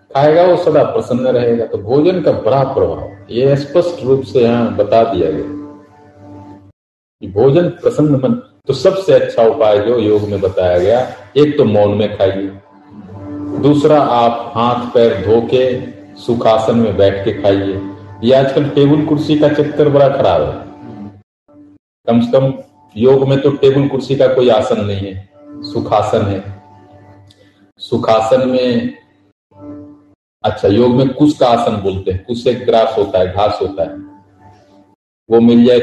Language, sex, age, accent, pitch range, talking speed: Hindi, male, 40-59, native, 100-145 Hz, 155 wpm